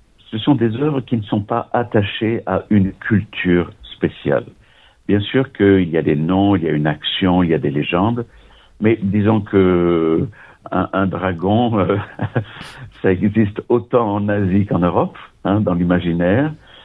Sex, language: male, French